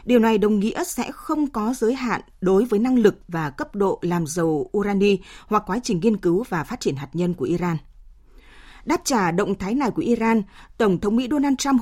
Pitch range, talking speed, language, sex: 195-255 Hz, 220 wpm, Vietnamese, female